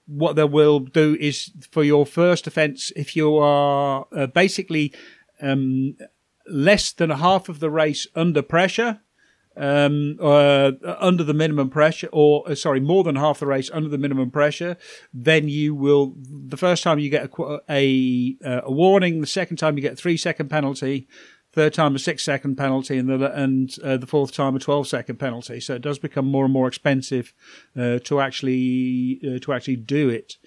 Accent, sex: British, male